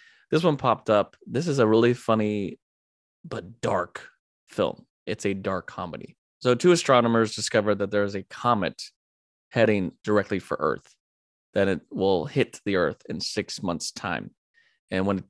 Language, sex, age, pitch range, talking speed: English, male, 20-39, 95-110 Hz, 165 wpm